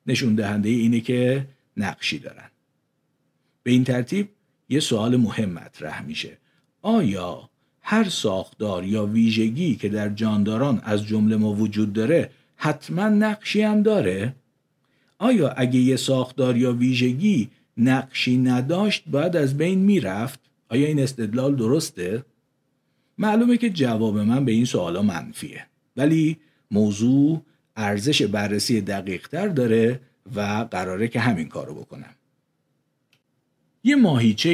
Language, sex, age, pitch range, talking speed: Persian, male, 50-69, 115-165 Hz, 120 wpm